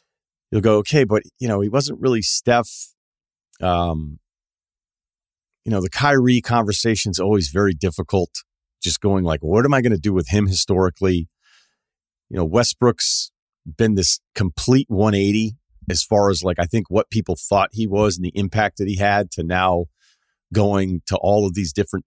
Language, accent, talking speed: English, American, 175 wpm